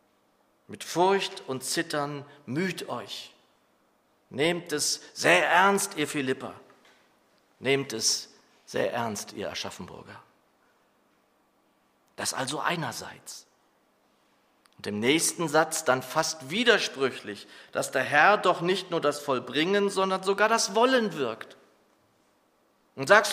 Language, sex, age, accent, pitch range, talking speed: German, male, 40-59, German, 135-195 Hz, 110 wpm